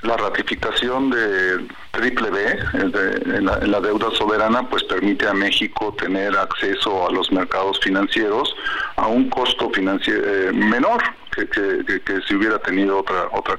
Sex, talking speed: male, 145 wpm